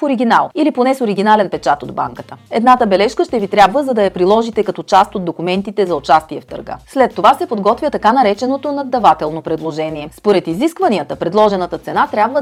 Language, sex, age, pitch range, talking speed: Bulgarian, female, 30-49, 180-255 Hz, 185 wpm